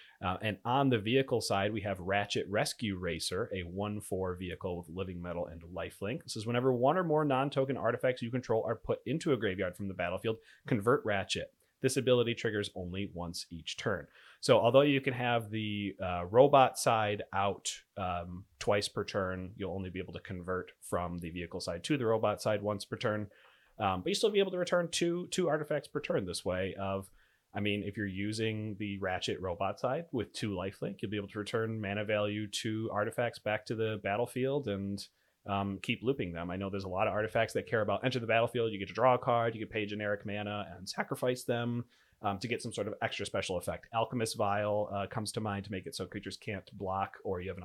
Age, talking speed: 30-49, 220 wpm